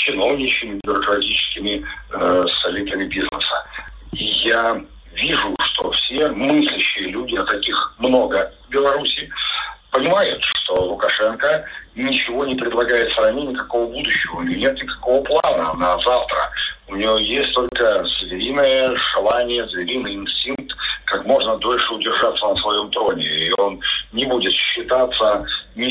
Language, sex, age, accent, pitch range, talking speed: Russian, male, 50-69, native, 105-145 Hz, 125 wpm